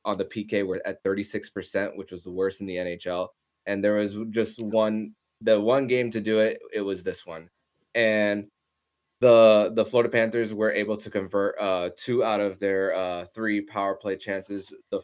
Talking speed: 190 wpm